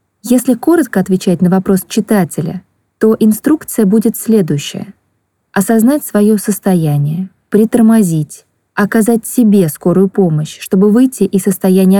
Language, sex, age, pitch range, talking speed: Russian, female, 20-39, 185-220 Hz, 110 wpm